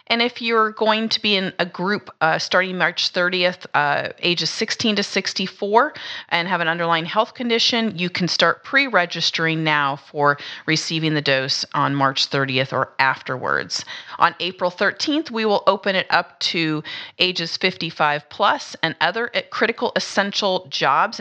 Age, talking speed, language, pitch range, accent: 30-49, 155 wpm, English, 160-210 Hz, American